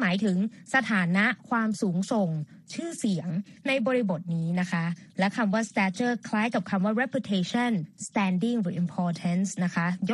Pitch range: 185-235 Hz